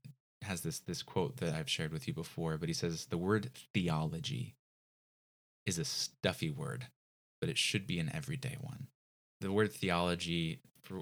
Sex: male